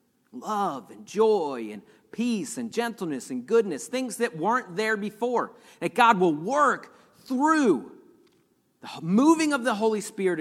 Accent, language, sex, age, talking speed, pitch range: American, English, male, 40-59, 145 wpm, 150-225 Hz